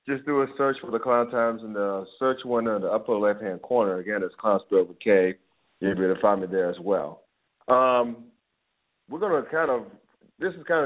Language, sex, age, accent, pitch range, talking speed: English, male, 40-59, American, 100-120 Hz, 215 wpm